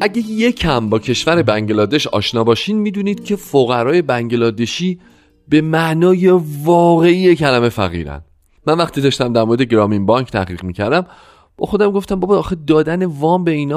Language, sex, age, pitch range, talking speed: Persian, male, 30-49, 105-160 Hz, 155 wpm